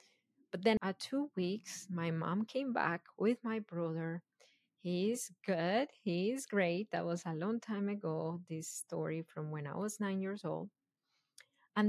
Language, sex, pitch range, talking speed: English, female, 175-210 Hz, 160 wpm